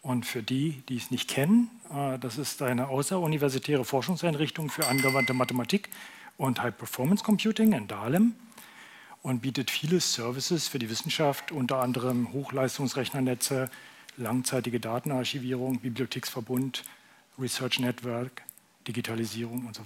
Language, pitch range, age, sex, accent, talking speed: German, 125-155 Hz, 40-59, male, German, 110 wpm